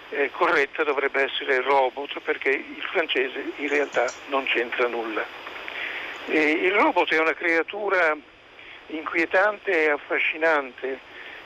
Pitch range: 145-170 Hz